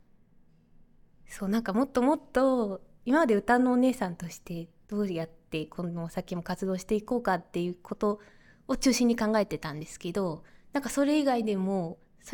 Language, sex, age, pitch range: Japanese, female, 20-39, 175-235 Hz